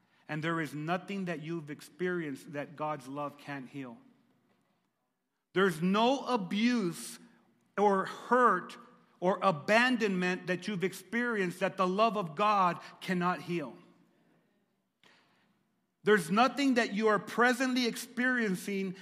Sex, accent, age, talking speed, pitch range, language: male, American, 40-59, 115 wpm, 170-210 Hz, English